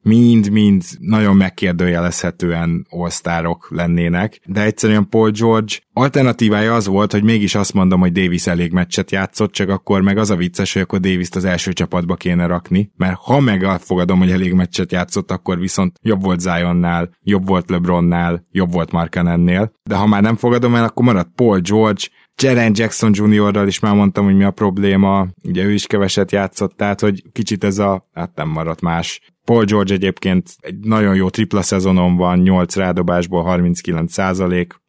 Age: 20-39